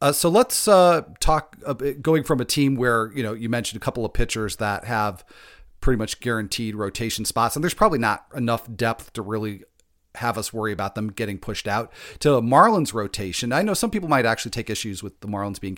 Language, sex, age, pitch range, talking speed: English, male, 40-59, 100-125 Hz, 220 wpm